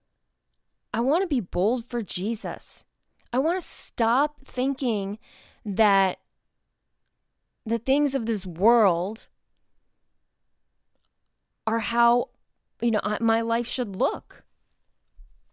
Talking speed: 100 wpm